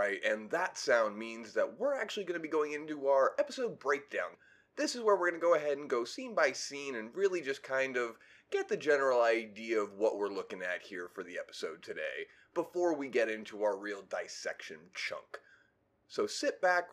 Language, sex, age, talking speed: English, male, 30-49, 210 wpm